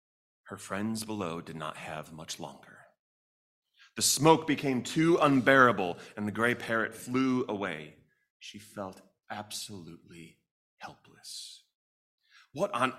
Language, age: English, 30-49